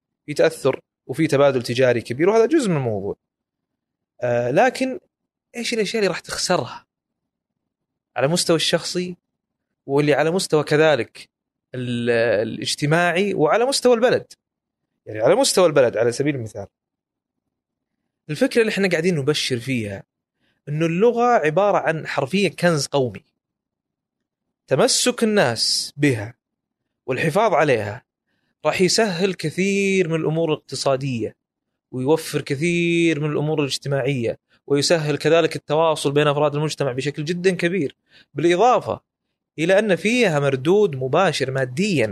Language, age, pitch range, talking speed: Arabic, 30-49, 140-190 Hz, 115 wpm